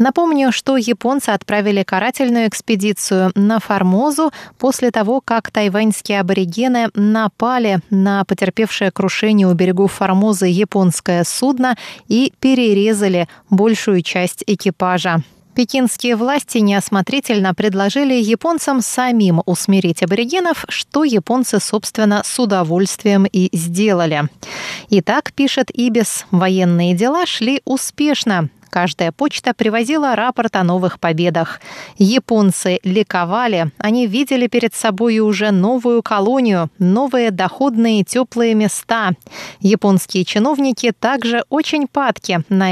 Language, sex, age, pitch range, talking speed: Russian, female, 20-39, 190-245 Hz, 105 wpm